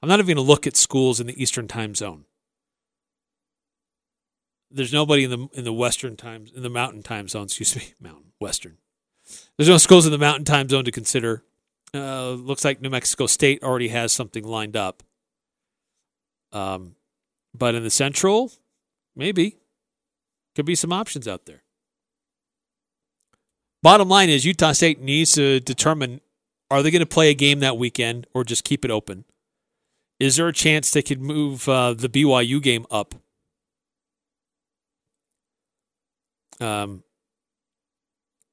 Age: 40-59